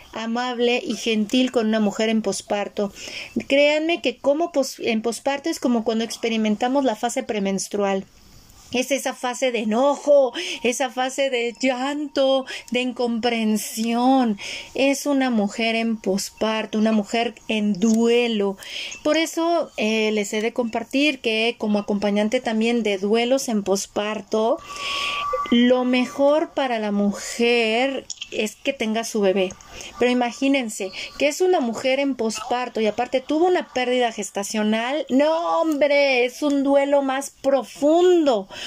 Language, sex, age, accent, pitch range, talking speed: Spanish, female, 40-59, Mexican, 220-275 Hz, 135 wpm